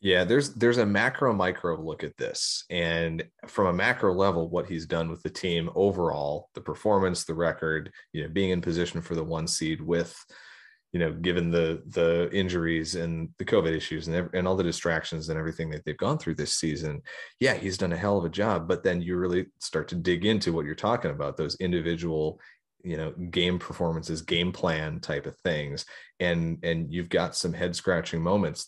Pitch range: 80-90 Hz